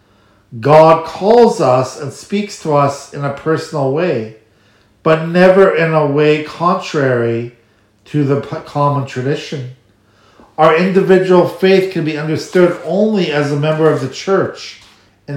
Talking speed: 135 wpm